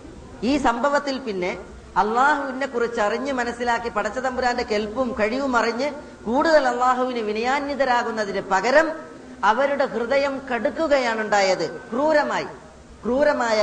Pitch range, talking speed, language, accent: 195-265 Hz, 95 wpm, Malayalam, native